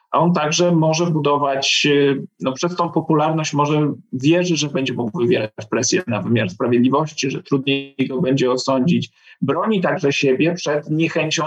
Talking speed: 150 wpm